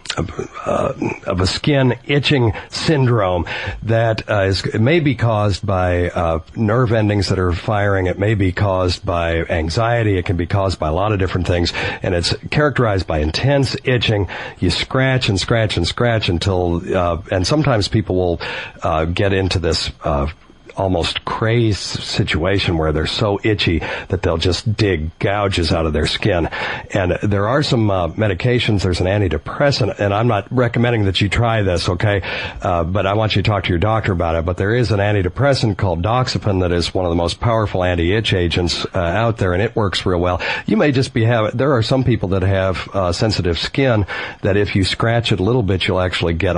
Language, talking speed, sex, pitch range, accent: English, 200 wpm, male, 90-115 Hz, American